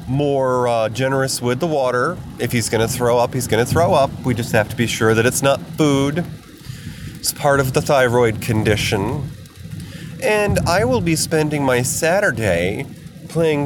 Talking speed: 180 wpm